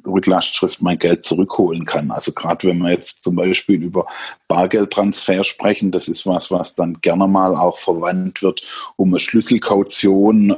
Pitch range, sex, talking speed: 95-105 Hz, male, 165 wpm